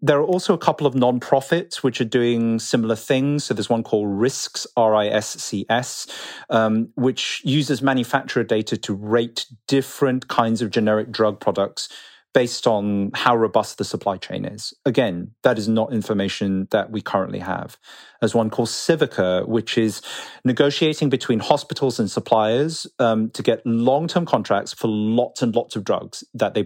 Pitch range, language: 110-140 Hz, English